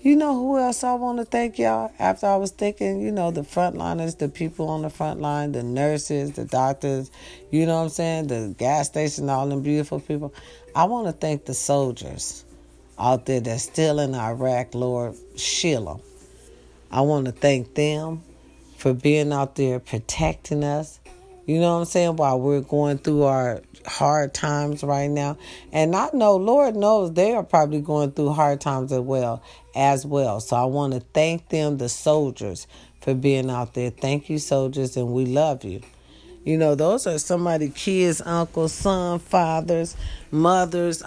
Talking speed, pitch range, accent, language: 180 wpm, 130-170 Hz, American, English